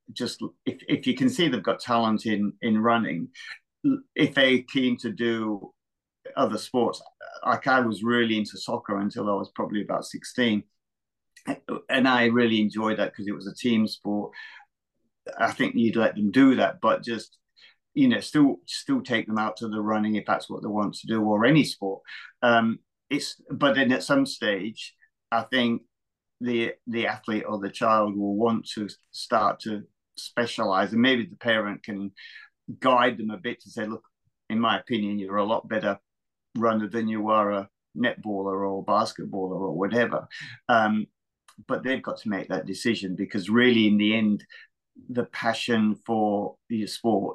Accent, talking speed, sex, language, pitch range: British, 175 wpm, male, English, 105-120 Hz